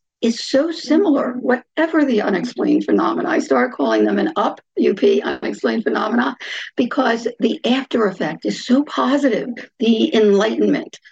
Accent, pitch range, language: American, 215-270 Hz, English